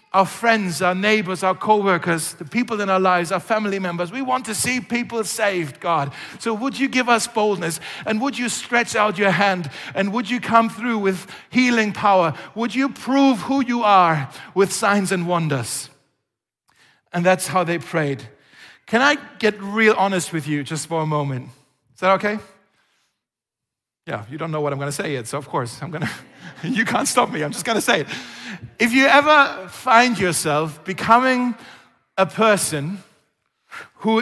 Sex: male